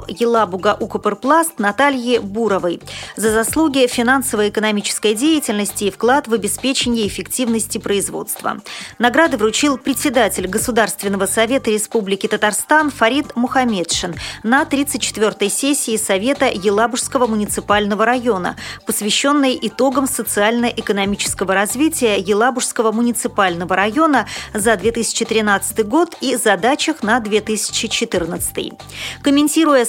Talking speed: 90 wpm